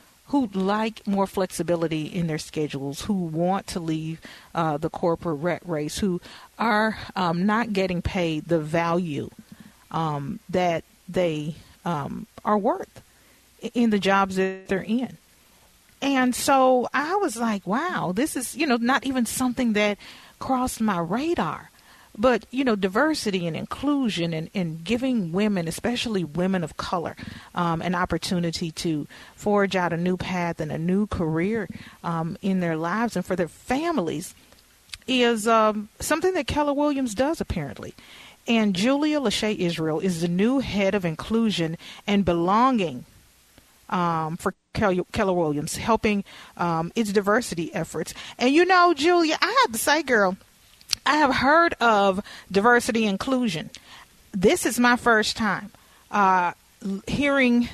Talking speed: 145 wpm